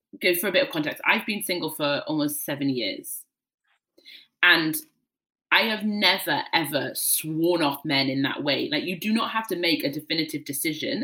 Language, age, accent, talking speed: English, 30-49, British, 185 wpm